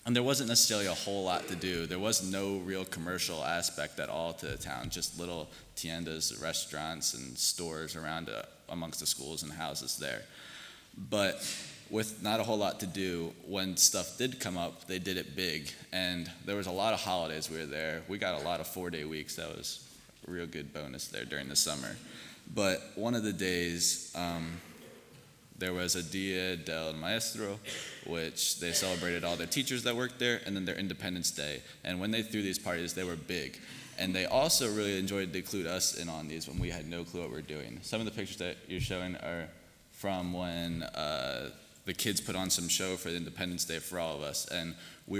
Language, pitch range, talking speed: English, 85-95 Hz, 210 wpm